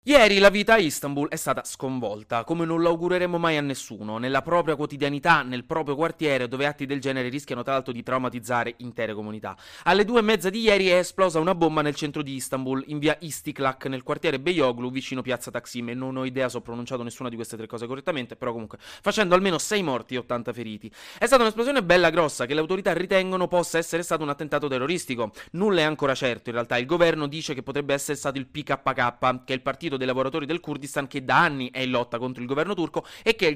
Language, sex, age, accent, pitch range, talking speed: Italian, male, 20-39, native, 130-175 Hz, 225 wpm